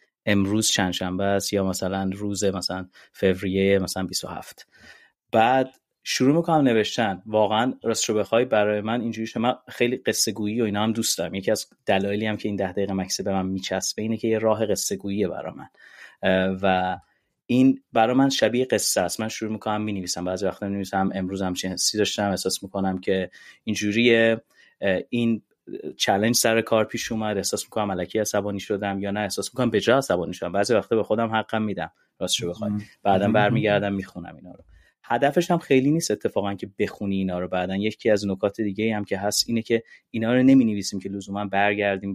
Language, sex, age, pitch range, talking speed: Persian, male, 30-49, 95-115 Hz, 190 wpm